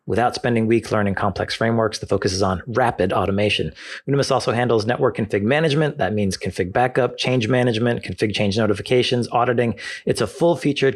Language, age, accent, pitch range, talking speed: English, 30-49, American, 110-135 Hz, 175 wpm